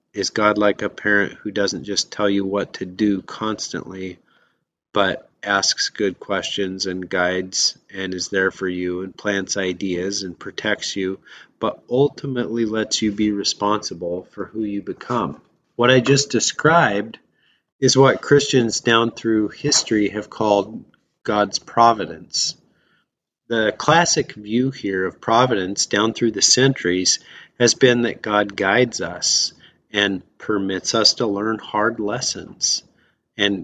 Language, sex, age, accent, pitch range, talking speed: English, male, 30-49, American, 95-115 Hz, 140 wpm